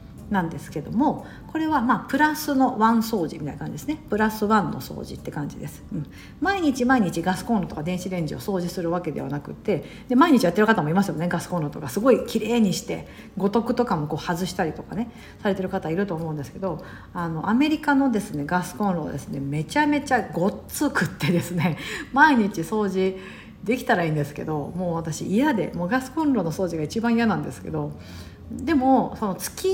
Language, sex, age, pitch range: Japanese, female, 50-69, 175-260 Hz